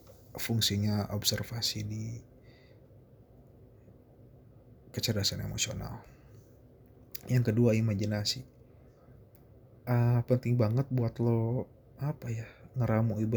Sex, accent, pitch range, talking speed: male, Indonesian, 110-125 Hz, 70 wpm